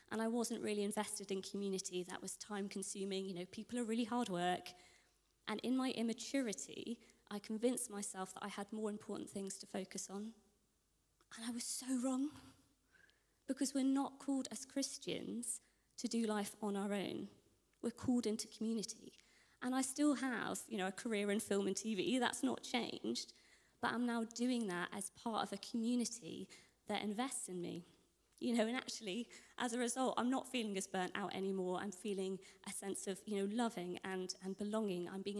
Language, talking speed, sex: English, 185 wpm, female